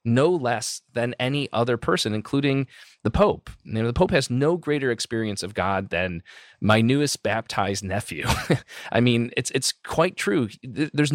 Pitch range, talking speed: 105-140 Hz, 165 wpm